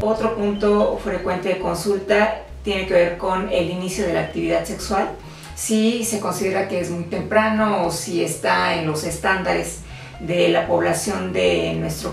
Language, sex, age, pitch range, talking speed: Spanish, female, 40-59, 165-200 Hz, 165 wpm